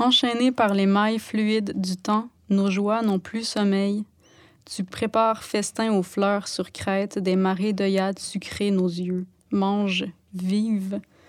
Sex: female